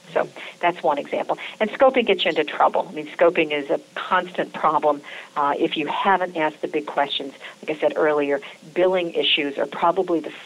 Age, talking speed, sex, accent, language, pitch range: 50-69, 195 wpm, female, American, English, 155-215 Hz